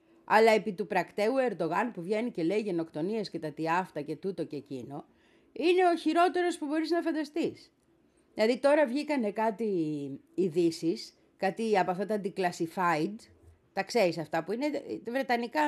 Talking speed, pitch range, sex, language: 155 wpm, 175-295 Hz, female, Greek